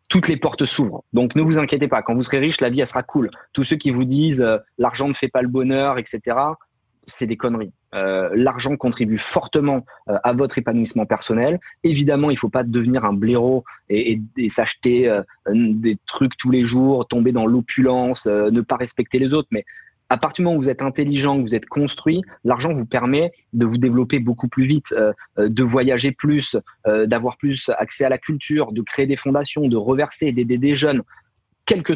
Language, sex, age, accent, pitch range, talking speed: French, male, 20-39, French, 120-145 Hz, 220 wpm